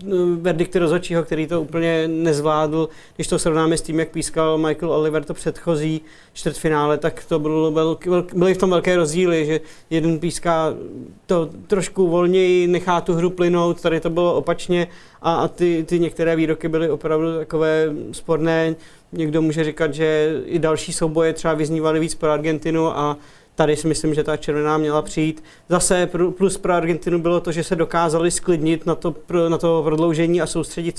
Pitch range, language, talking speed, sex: 155-170 Hz, Czech, 165 wpm, male